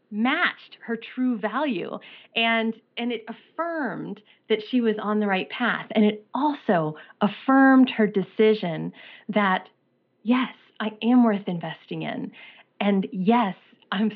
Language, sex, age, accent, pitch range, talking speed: English, female, 30-49, American, 195-245 Hz, 130 wpm